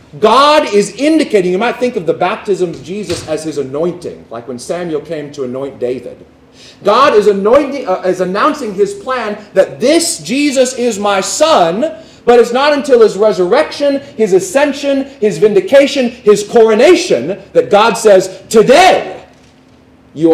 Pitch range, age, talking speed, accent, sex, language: 155-235 Hz, 30-49, 155 wpm, American, male, English